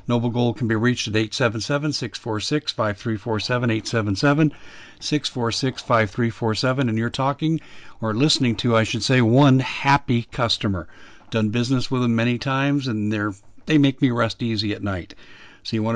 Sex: male